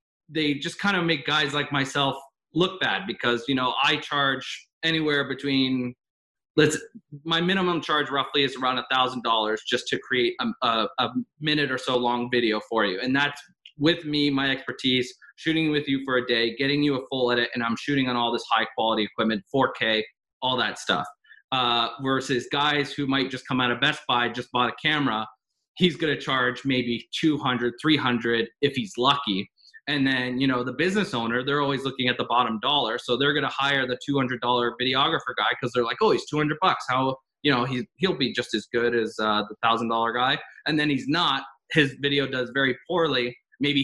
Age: 20-39